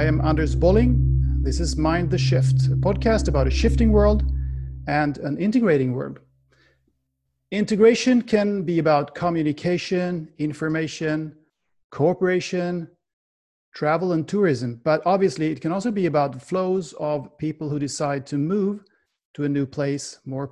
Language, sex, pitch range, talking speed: English, male, 140-185 Hz, 145 wpm